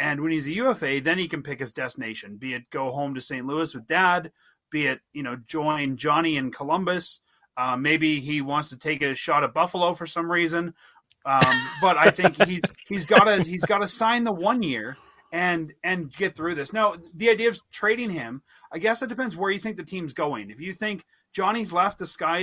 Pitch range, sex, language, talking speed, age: 150-200 Hz, male, English, 220 wpm, 30-49